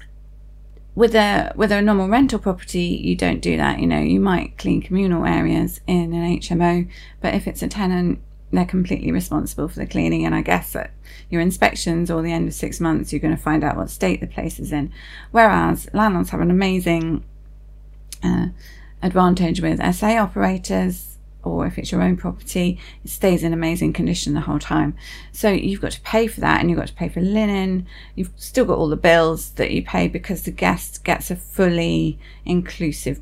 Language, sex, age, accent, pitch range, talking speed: English, female, 30-49, British, 150-205 Hz, 195 wpm